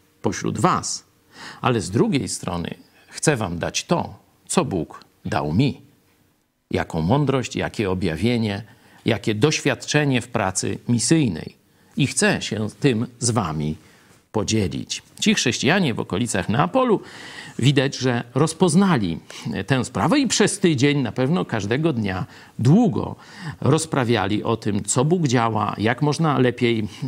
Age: 50-69